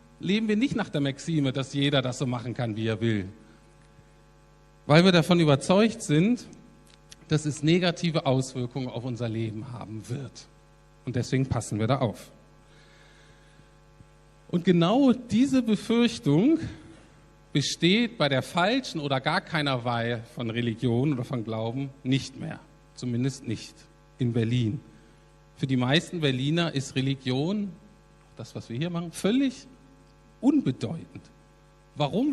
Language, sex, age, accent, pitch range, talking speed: German, male, 50-69, German, 130-180 Hz, 135 wpm